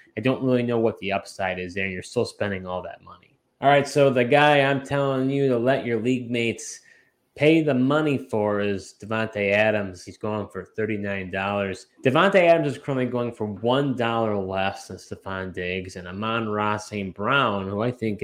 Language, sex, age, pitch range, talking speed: English, male, 20-39, 100-125 Hz, 190 wpm